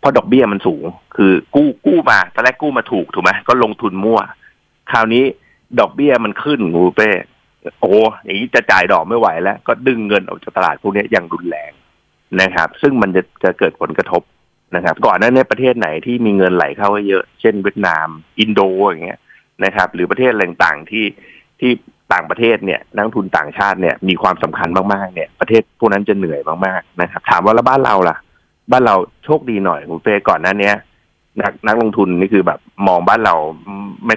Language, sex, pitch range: Thai, male, 95-120 Hz